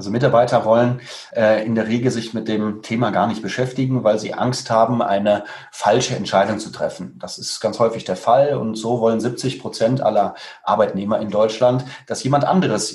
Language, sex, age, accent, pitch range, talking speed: German, male, 30-49, German, 110-130 Hz, 190 wpm